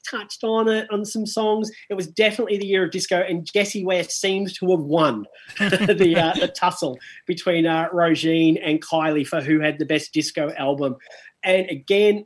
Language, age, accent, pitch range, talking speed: English, 30-49, Australian, 170-210 Hz, 190 wpm